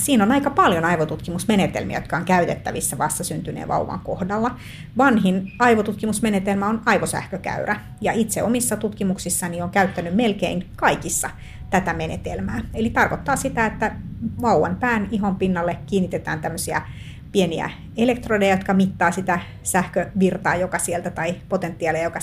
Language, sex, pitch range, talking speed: Finnish, female, 165-205 Hz, 125 wpm